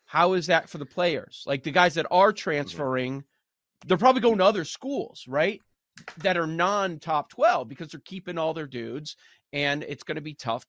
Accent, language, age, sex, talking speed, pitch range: American, English, 30-49, male, 195 wpm, 140-185 Hz